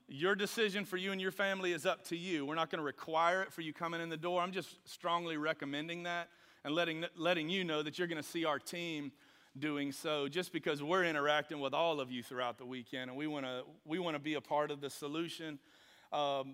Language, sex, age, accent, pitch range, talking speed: English, male, 40-59, American, 140-180 Hz, 245 wpm